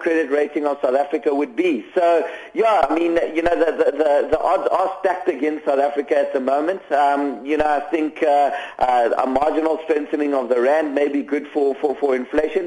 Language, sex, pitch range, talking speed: English, male, 145-170 Hz, 220 wpm